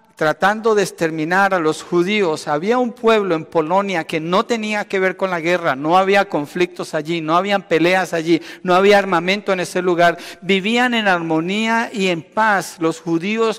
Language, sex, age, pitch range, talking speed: Spanish, male, 50-69, 165-225 Hz, 180 wpm